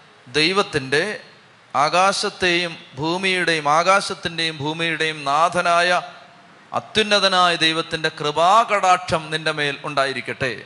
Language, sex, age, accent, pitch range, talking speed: Malayalam, male, 30-49, native, 155-185 Hz, 70 wpm